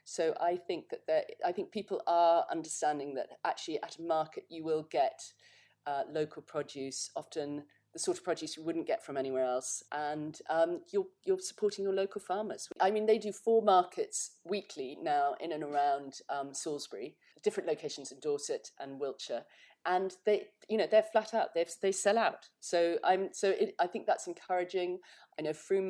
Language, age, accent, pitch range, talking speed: English, 40-59, British, 145-215 Hz, 190 wpm